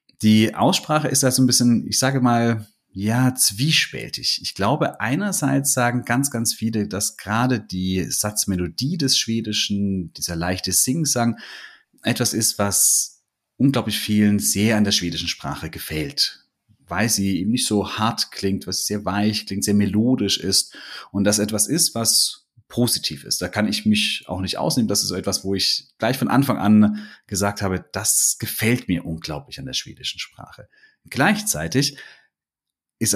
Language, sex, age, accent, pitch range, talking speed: German, male, 30-49, German, 95-125 Hz, 160 wpm